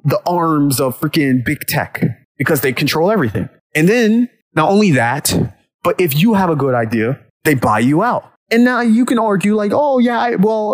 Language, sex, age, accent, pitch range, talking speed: English, male, 30-49, American, 135-190 Hz, 200 wpm